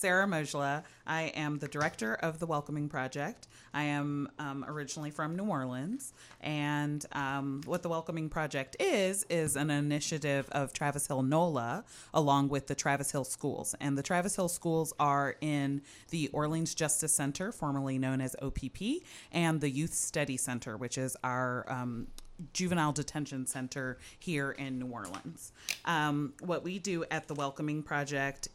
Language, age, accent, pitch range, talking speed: English, 30-49, American, 135-160 Hz, 160 wpm